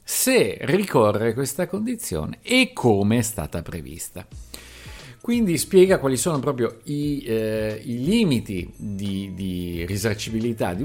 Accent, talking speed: native, 120 wpm